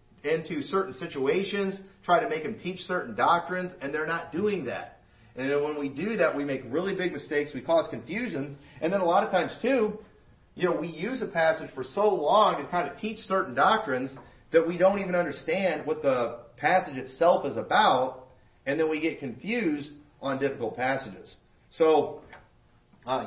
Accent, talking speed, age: American, 185 wpm, 40-59